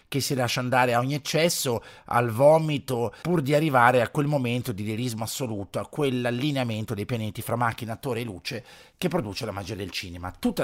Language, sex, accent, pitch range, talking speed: Italian, male, native, 115-150 Hz, 190 wpm